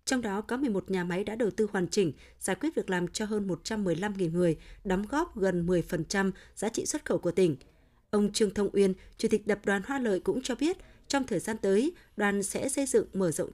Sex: female